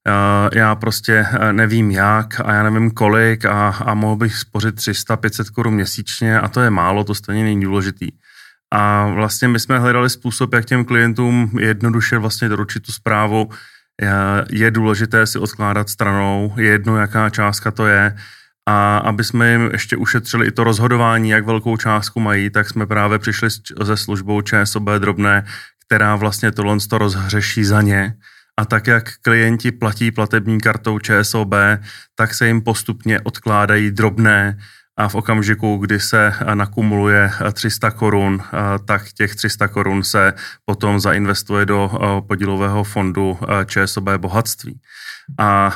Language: Czech